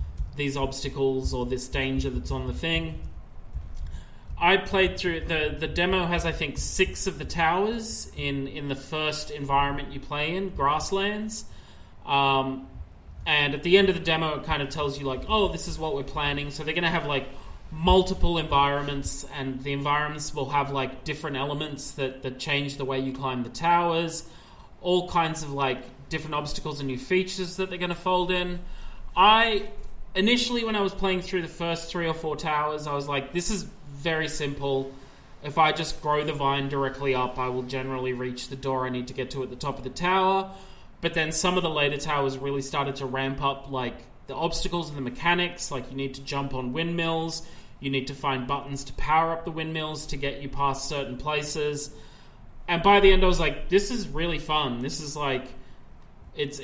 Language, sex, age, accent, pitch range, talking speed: English, male, 20-39, Australian, 135-170 Hz, 205 wpm